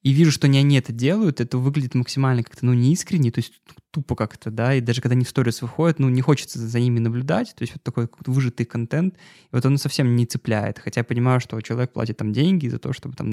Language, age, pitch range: Russian, 20-39, 120-140 Hz